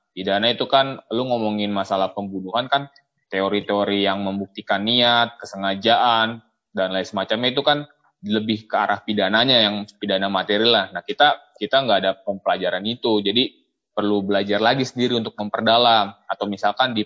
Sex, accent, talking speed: male, native, 150 wpm